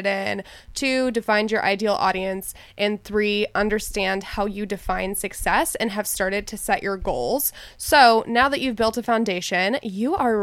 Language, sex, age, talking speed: English, female, 20-39, 165 wpm